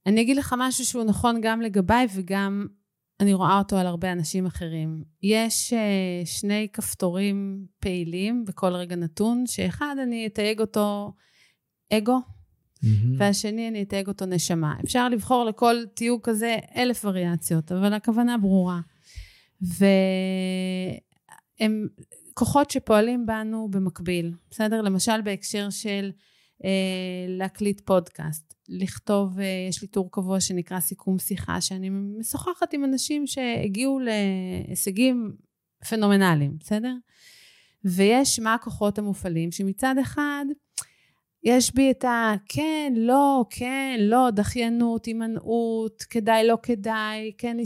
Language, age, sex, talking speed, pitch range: Hebrew, 30-49, female, 115 wpm, 190-235 Hz